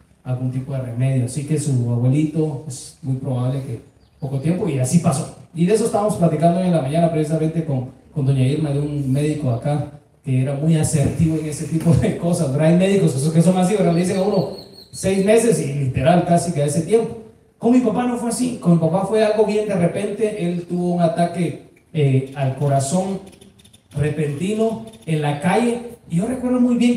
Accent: Mexican